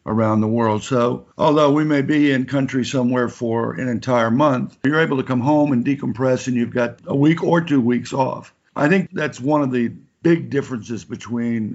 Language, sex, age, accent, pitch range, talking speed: English, male, 60-79, American, 120-145 Hz, 205 wpm